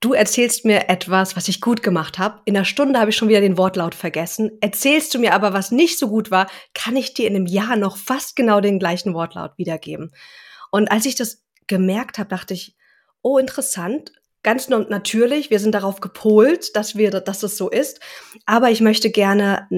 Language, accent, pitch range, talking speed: German, German, 190-225 Hz, 205 wpm